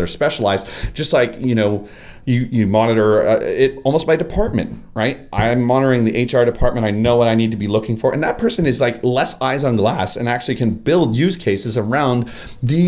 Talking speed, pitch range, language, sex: 215 wpm, 115-165 Hz, English, male